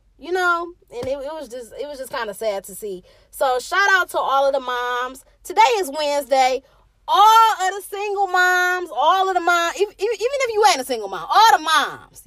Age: 20-39